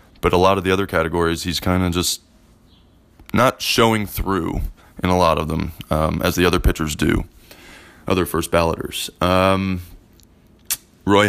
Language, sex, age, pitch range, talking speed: English, male, 20-39, 85-95 Hz, 160 wpm